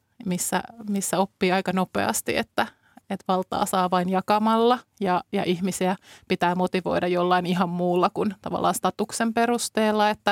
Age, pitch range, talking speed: 20-39, 180-210 Hz, 140 wpm